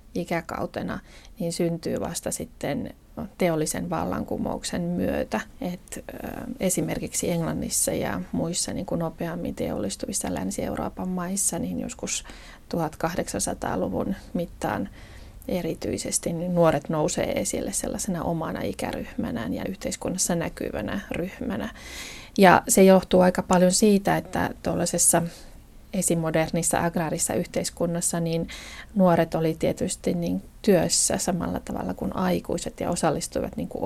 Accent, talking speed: native, 105 wpm